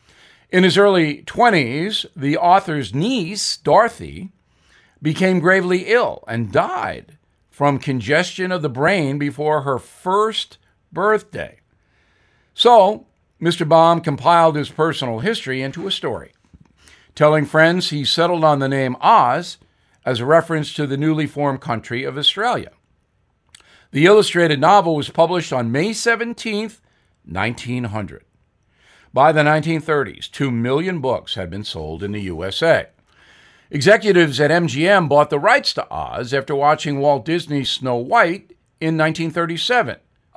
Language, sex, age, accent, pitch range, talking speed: English, male, 50-69, American, 130-170 Hz, 130 wpm